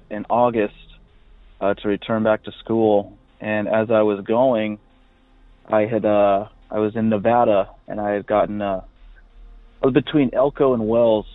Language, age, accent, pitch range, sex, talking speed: English, 30-49, American, 105-120 Hz, male, 165 wpm